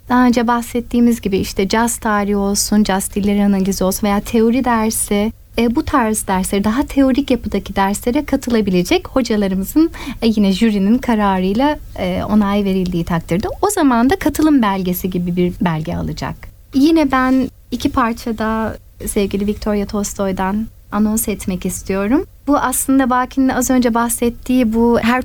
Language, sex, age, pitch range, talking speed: Turkish, female, 30-49, 205-250 Hz, 140 wpm